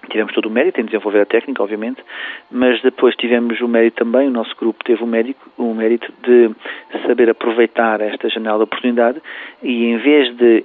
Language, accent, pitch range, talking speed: Portuguese, Portuguese, 110-125 Hz, 185 wpm